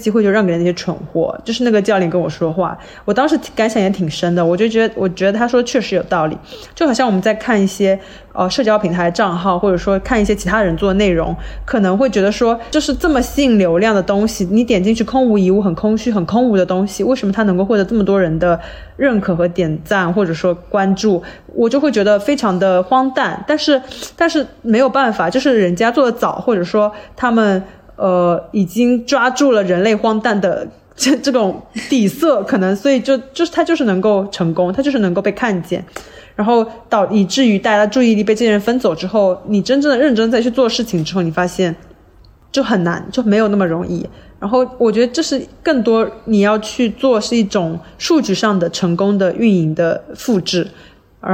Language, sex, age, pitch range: Chinese, female, 20-39, 185-240 Hz